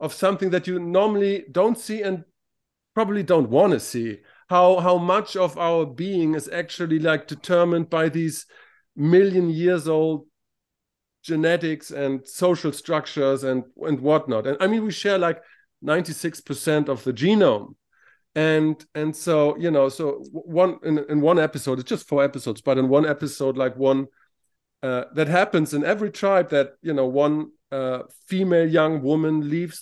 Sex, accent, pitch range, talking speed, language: male, German, 145-190 Hz, 165 wpm, English